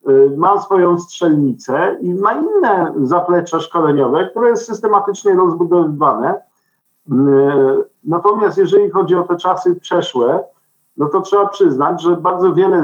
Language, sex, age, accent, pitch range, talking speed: Polish, male, 50-69, native, 160-220 Hz, 120 wpm